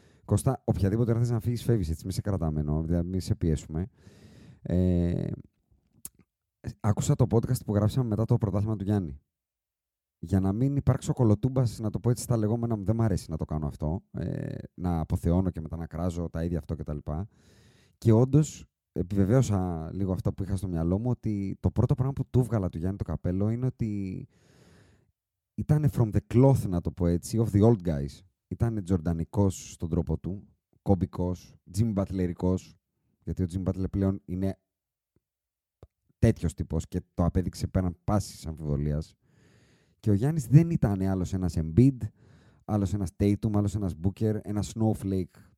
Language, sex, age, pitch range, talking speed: Greek, male, 30-49, 90-120 Hz, 170 wpm